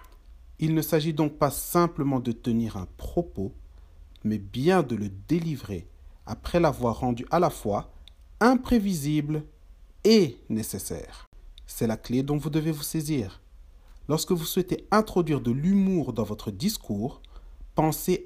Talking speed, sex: 140 wpm, male